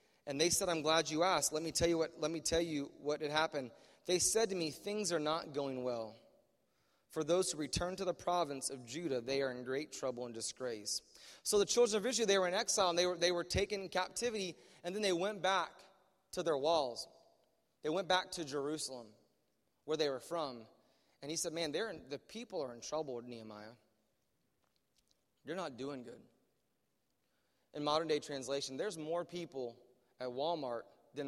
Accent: American